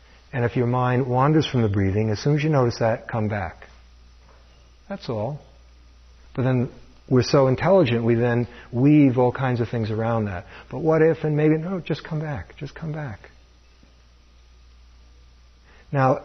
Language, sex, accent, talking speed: English, male, American, 165 wpm